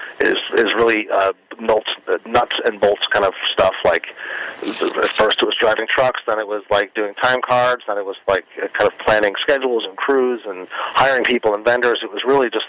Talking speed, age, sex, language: 210 wpm, 40-59, male, English